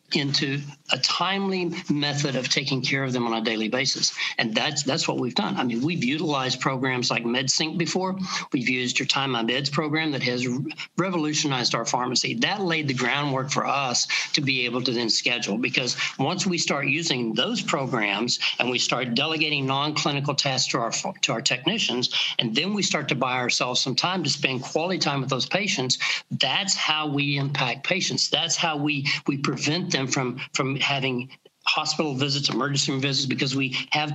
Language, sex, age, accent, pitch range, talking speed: English, male, 60-79, American, 130-155 Hz, 190 wpm